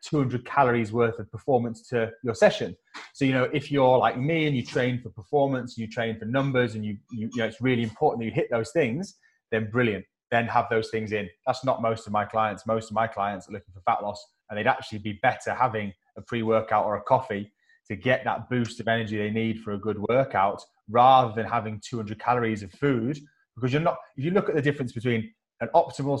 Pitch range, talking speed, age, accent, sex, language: 110-125 Hz, 235 wpm, 20-39, British, male, English